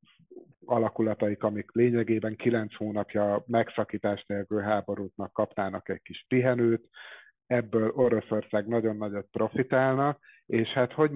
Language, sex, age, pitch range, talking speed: Hungarian, male, 50-69, 100-110 Hz, 110 wpm